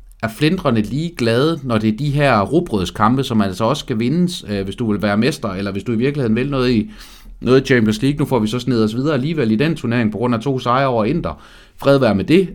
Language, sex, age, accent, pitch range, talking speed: Danish, male, 30-49, native, 110-140 Hz, 265 wpm